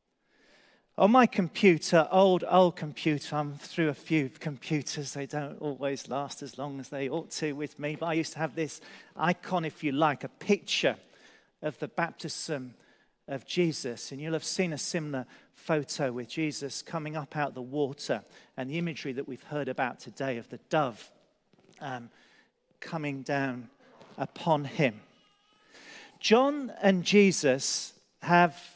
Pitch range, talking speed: 145-190 Hz, 155 wpm